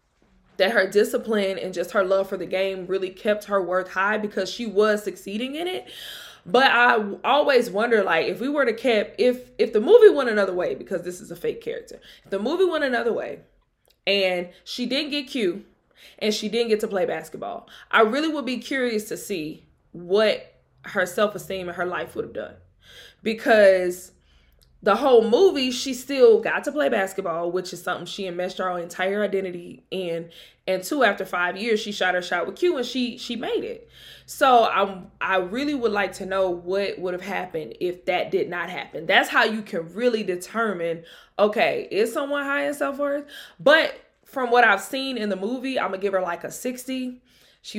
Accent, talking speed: American, 200 wpm